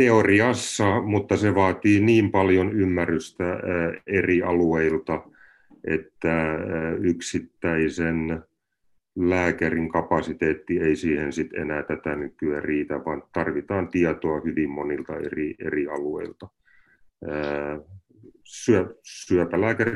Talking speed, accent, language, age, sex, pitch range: 85 wpm, native, Finnish, 30-49, male, 80-95 Hz